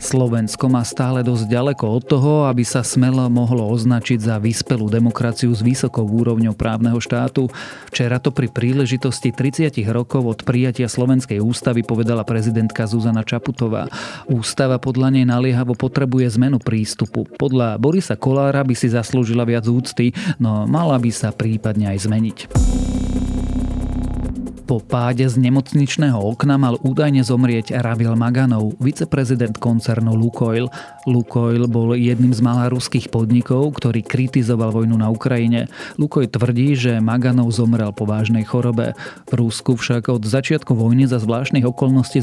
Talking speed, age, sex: 140 wpm, 40-59, male